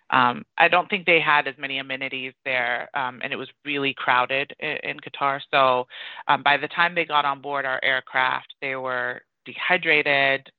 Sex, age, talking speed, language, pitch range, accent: female, 30-49, 185 wpm, English, 140-170 Hz, American